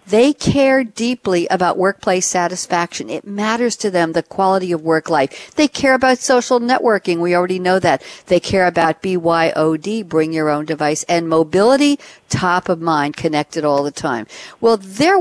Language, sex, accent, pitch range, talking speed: English, female, American, 165-220 Hz, 170 wpm